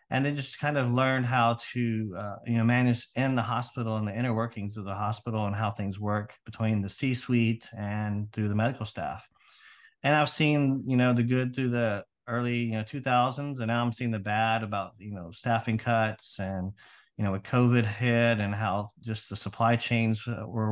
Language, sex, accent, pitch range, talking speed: English, male, American, 110-125 Hz, 205 wpm